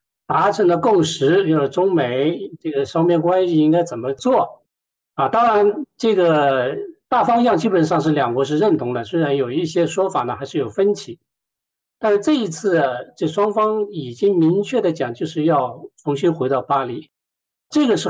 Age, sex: 50-69, male